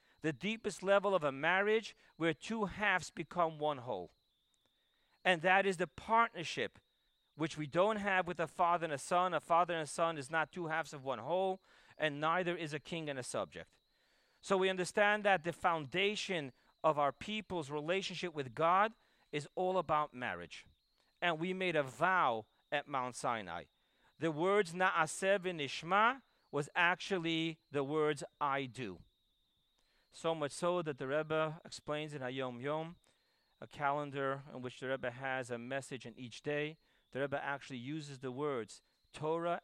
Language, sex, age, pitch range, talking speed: English, male, 40-59, 135-175 Hz, 165 wpm